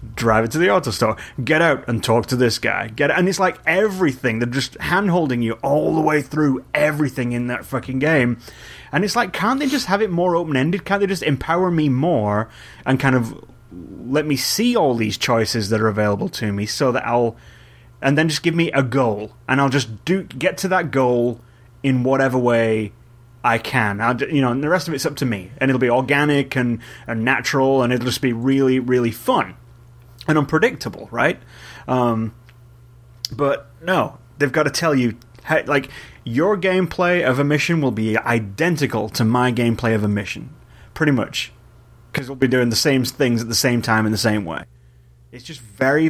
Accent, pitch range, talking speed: British, 115-150 Hz, 205 wpm